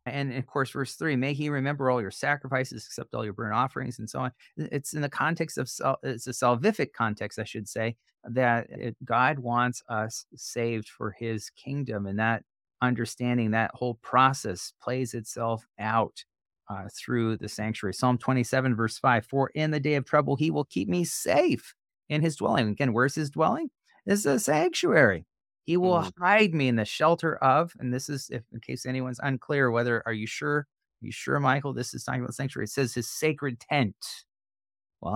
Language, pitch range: English, 110-135 Hz